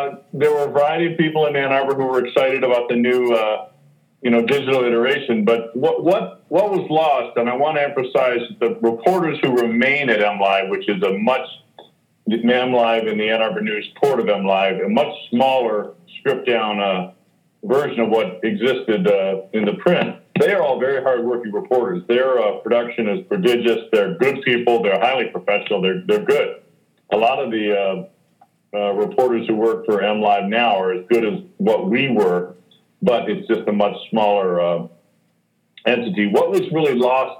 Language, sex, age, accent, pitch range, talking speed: English, male, 50-69, American, 110-135 Hz, 190 wpm